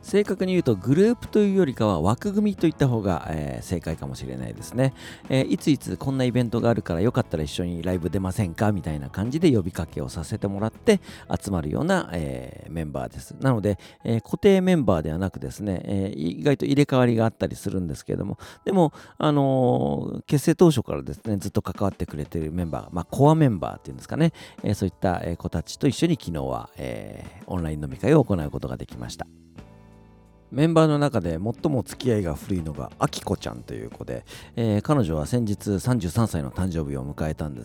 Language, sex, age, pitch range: Japanese, male, 40-59, 80-125 Hz